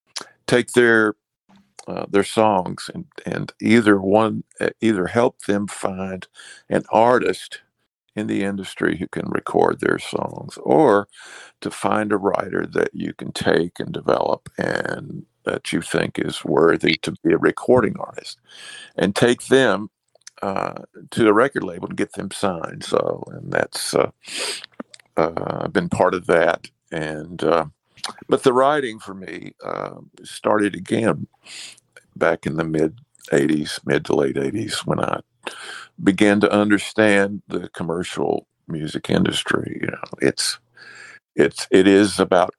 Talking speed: 140 wpm